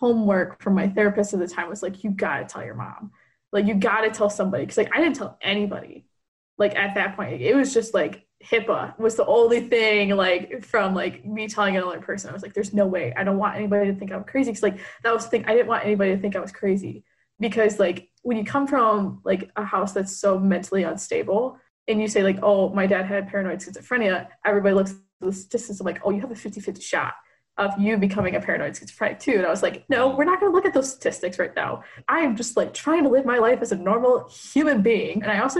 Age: 20-39